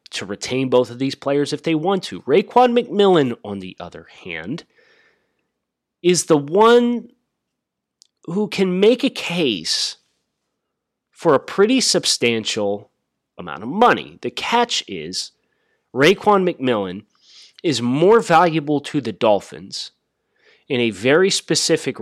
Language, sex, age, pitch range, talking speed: English, male, 30-49, 105-160 Hz, 125 wpm